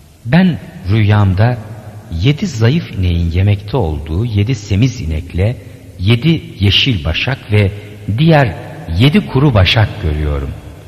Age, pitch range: 60-79, 80-115 Hz